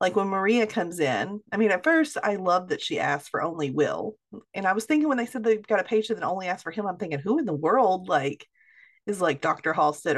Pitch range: 175-240 Hz